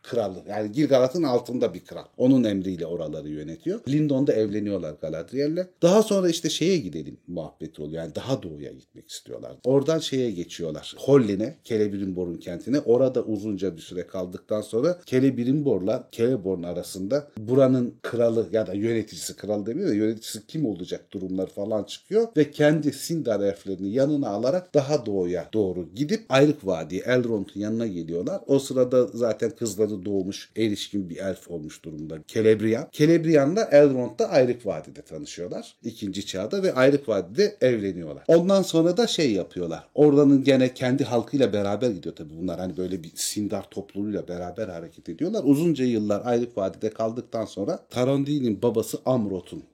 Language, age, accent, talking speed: Turkish, 40-59, native, 145 wpm